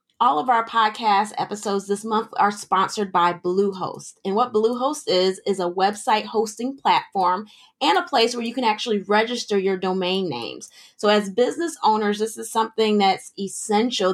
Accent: American